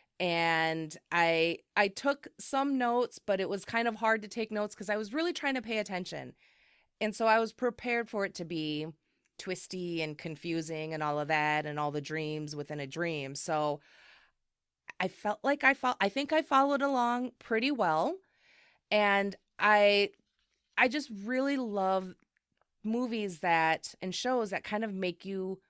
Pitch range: 170-235 Hz